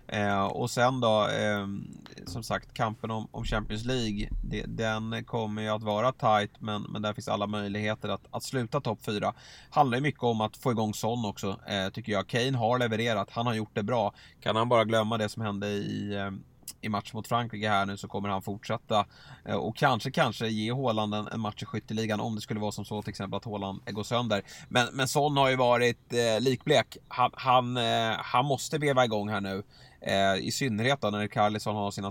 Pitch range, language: 105-125 Hz, Swedish